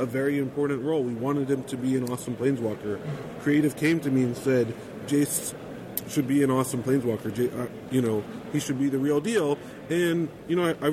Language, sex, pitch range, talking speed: English, male, 125-145 Hz, 215 wpm